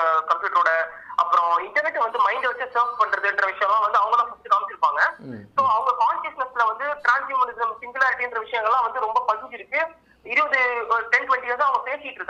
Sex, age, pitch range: male, 30-49, 205-280 Hz